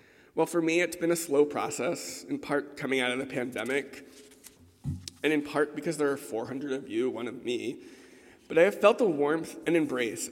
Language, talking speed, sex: English, 205 wpm, male